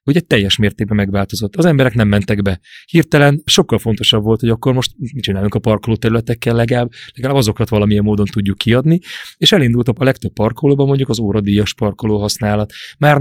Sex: male